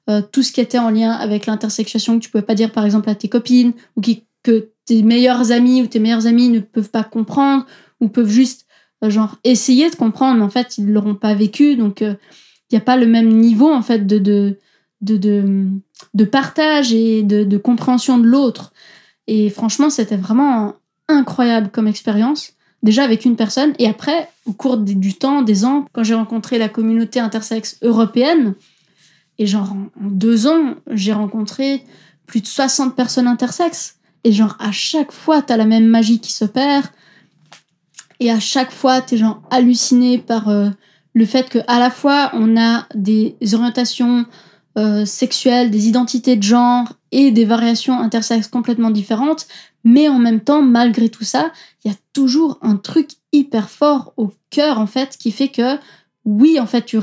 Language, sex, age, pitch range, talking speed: French, female, 20-39, 215-255 Hz, 190 wpm